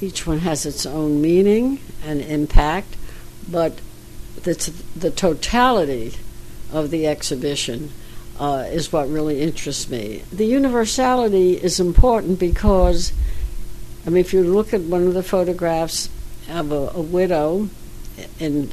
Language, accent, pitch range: English, American, 140-180 Hz